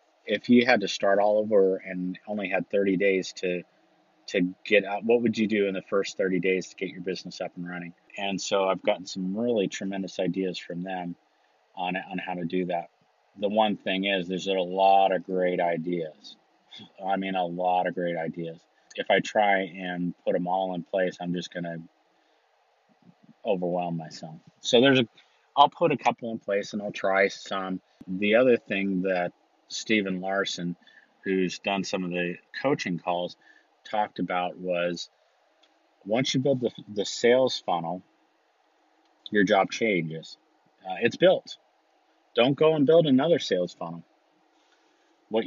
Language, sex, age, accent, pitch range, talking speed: English, male, 30-49, American, 90-105 Hz, 170 wpm